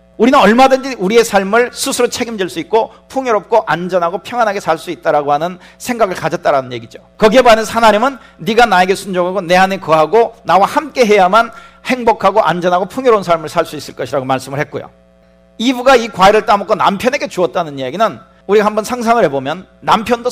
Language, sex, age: Korean, male, 40-59